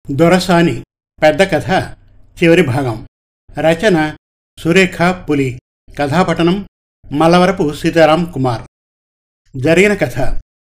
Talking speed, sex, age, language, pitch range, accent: 80 wpm, male, 50-69, Telugu, 120-170 Hz, native